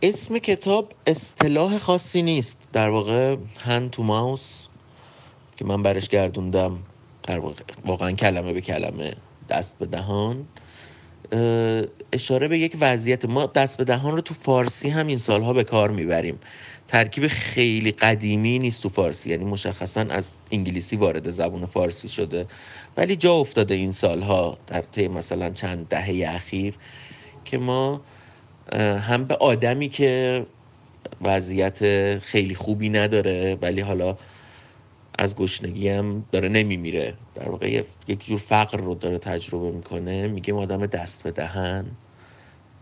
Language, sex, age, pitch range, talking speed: Persian, male, 30-49, 95-125 Hz, 135 wpm